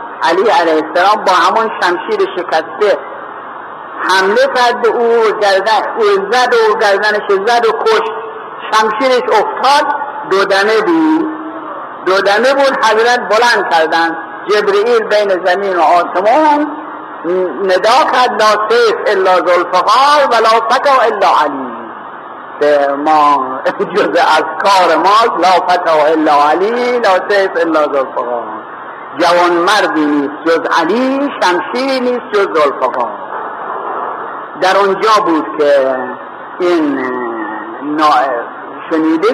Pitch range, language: 165-255 Hz, Persian